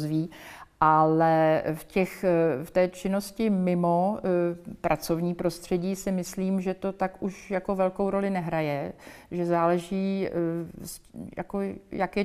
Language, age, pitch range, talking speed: Czech, 50-69, 170-195 Hz, 105 wpm